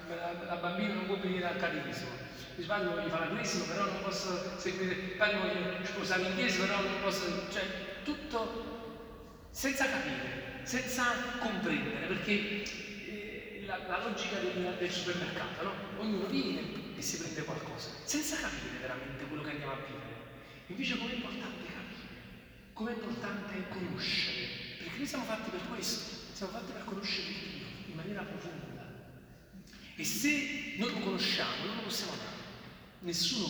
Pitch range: 175-215 Hz